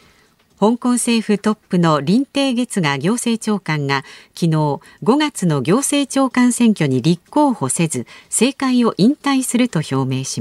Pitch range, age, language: 160-250 Hz, 50-69, Japanese